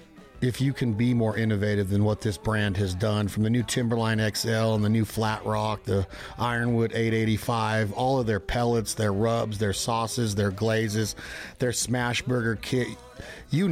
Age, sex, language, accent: 40-59, male, English, American